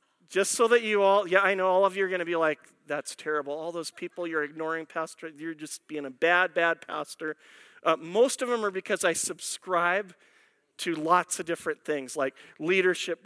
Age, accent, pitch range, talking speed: 40-59, American, 175-240 Hz, 210 wpm